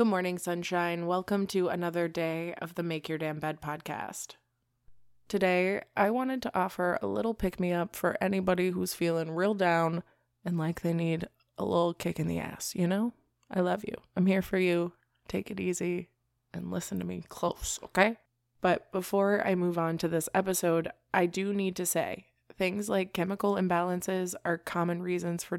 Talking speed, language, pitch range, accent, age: 180 wpm, English, 160-185 Hz, American, 20-39